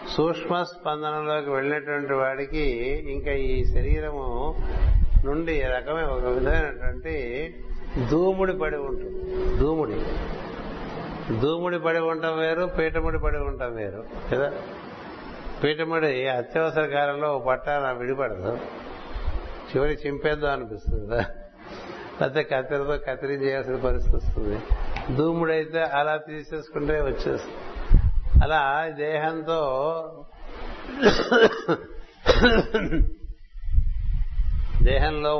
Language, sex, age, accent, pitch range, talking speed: Telugu, male, 60-79, native, 115-150 Hz, 80 wpm